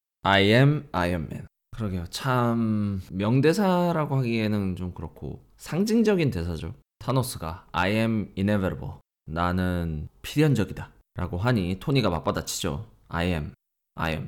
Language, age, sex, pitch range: Korean, 20-39, male, 90-130 Hz